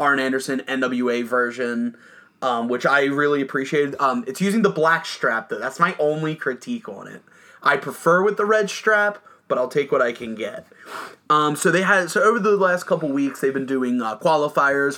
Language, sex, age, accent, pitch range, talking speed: English, male, 30-49, American, 135-185 Hz, 200 wpm